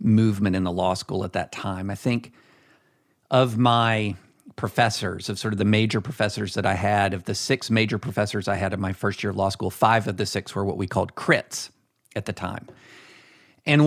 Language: English